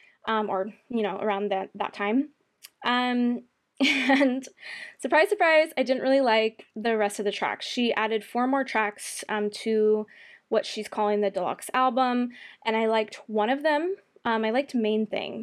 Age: 20-39